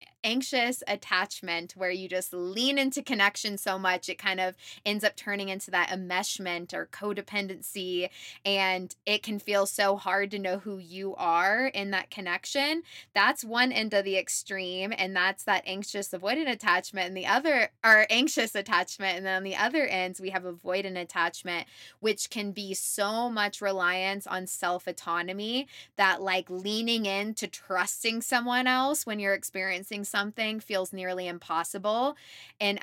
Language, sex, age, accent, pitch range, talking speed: English, female, 20-39, American, 185-215 Hz, 155 wpm